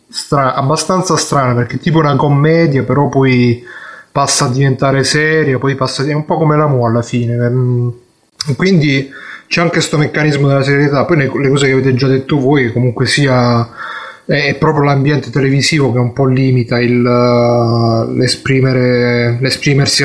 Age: 20-39